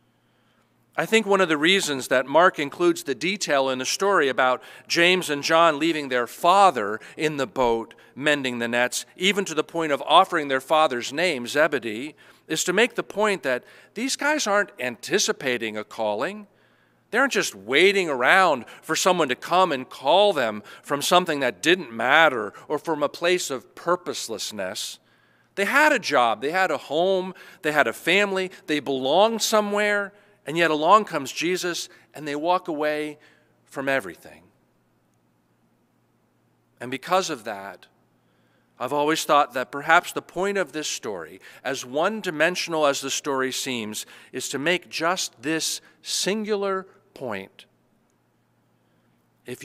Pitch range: 130-185 Hz